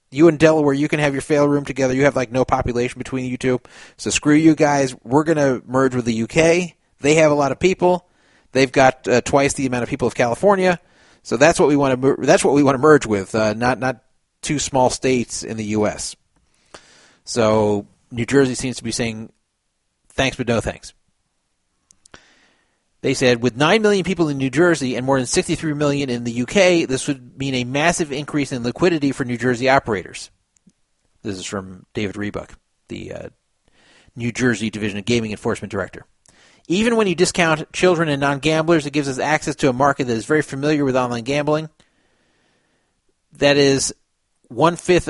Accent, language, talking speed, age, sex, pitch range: American, English, 190 wpm, 30-49, male, 120-150 Hz